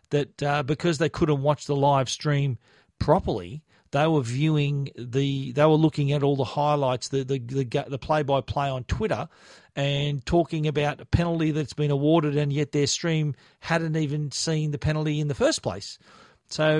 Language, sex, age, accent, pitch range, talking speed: English, male, 40-59, Australian, 140-175 Hz, 180 wpm